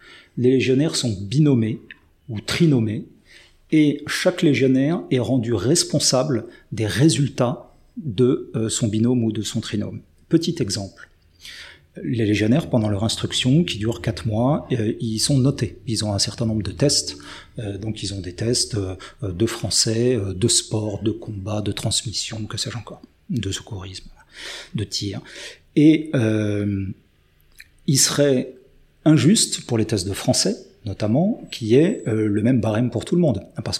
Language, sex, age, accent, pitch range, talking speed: French, male, 40-59, French, 105-130 Hz, 155 wpm